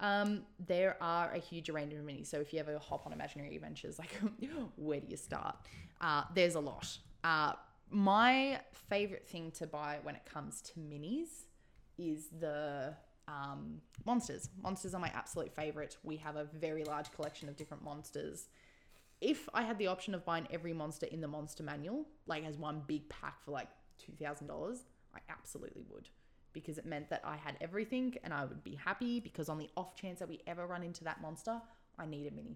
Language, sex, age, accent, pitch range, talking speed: English, female, 20-39, Australian, 150-185 Hz, 195 wpm